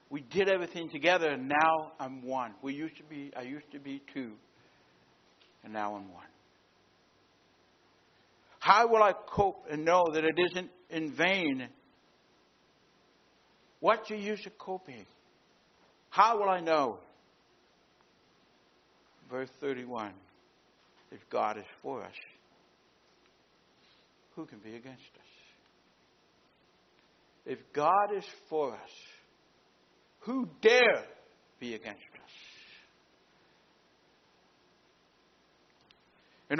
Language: English